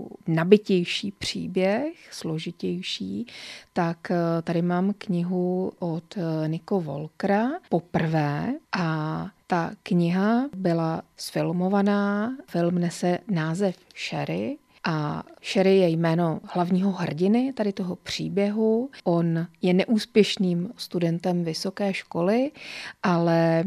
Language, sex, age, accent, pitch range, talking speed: Czech, female, 30-49, native, 165-190 Hz, 90 wpm